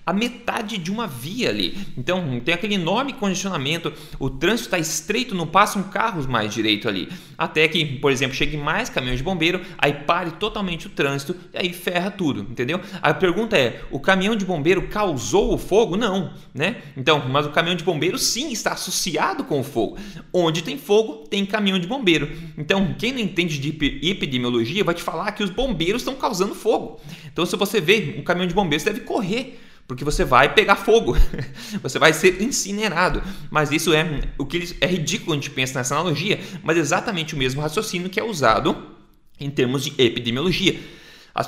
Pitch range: 145-195 Hz